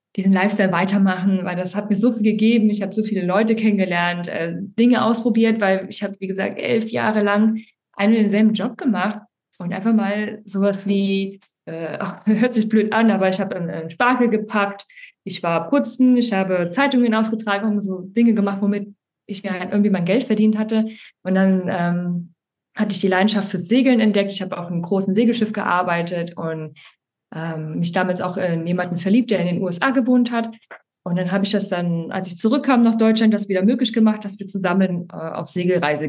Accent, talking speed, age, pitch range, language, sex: German, 195 wpm, 20-39, 185-220 Hz, German, female